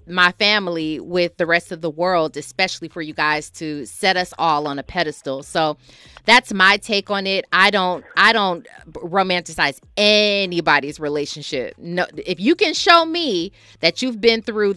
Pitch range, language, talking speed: 165-225 Hz, English, 170 wpm